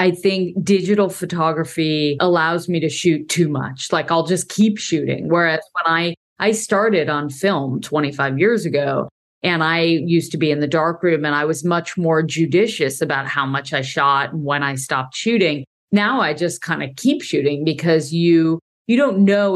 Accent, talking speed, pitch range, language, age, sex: American, 190 wpm, 155-195 Hz, English, 40-59, female